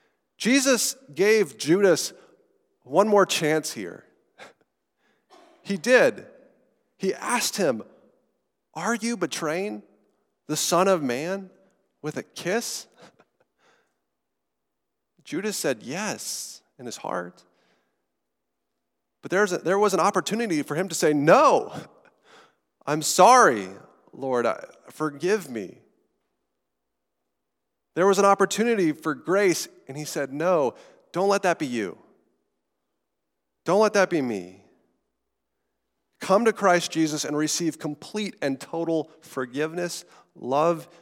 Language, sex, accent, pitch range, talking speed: English, male, American, 140-200 Hz, 110 wpm